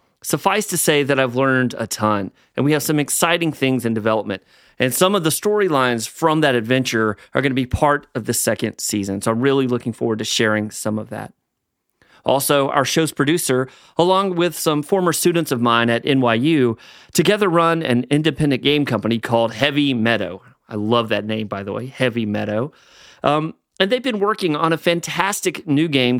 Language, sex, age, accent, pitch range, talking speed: English, male, 30-49, American, 115-155 Hz, 190 wpm